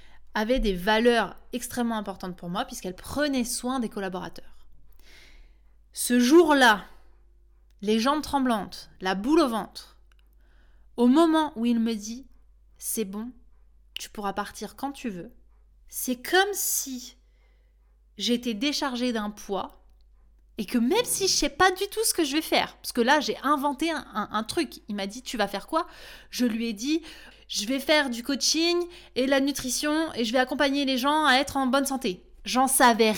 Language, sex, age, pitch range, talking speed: French, female, 20-39, 215-290 Hz, 180 wpm